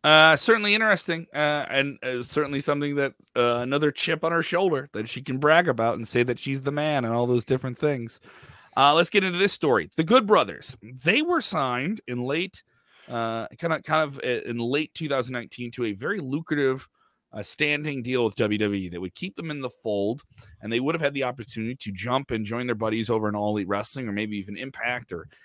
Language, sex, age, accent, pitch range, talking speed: English, male, 30-49, American, 110-145 Hz, 215 wpm